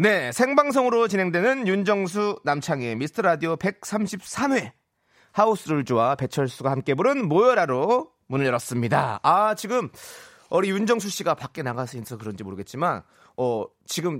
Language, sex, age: Korean, male, 30-49